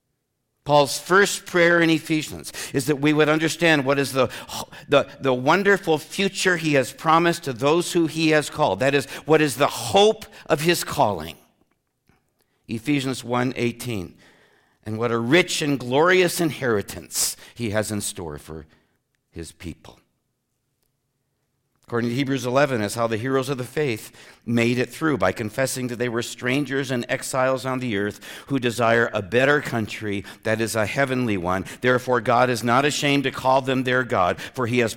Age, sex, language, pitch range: 60-79, male, English, 105-140 Hz